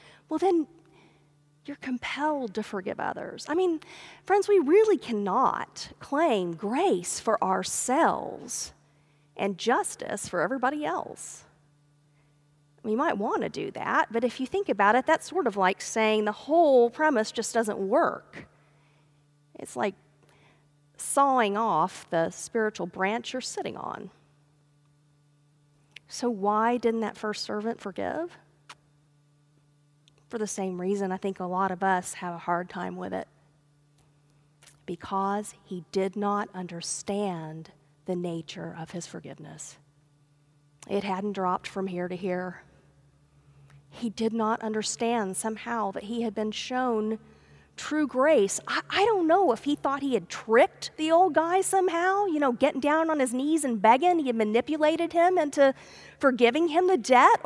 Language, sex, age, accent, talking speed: English, female, 40-59, American, 145 wpm